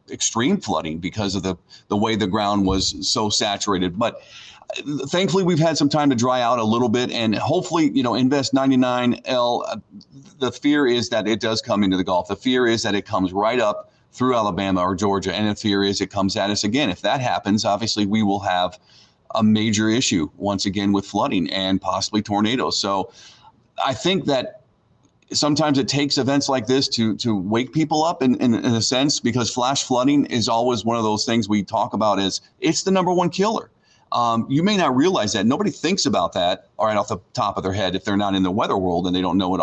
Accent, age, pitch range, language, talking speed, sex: American, 40-59, 100-135 Hz, English, 225 wpm, male